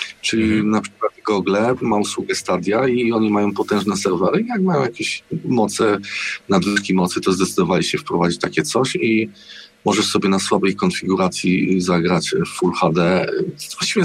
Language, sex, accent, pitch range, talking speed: Polish, male, native, 95-125 Hz, 150 wpm